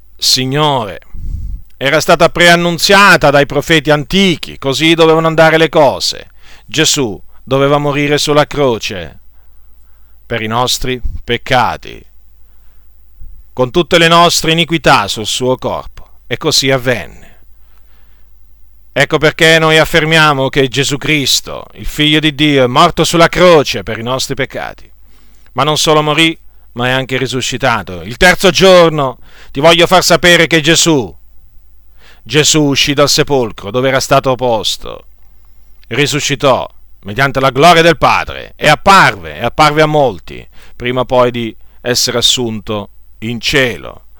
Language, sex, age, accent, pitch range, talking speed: Italian, male, 50-69, native, 110-160 Hz, 130 wpm